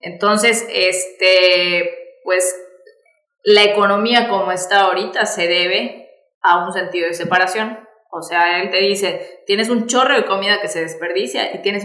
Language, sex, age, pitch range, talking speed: Spanish, female, 20-39, 185-220 Hz, 150 wpm